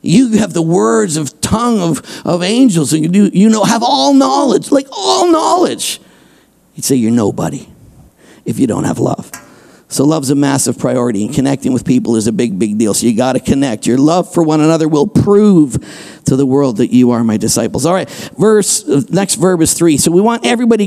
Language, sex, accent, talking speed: English, male, American, 210 wpm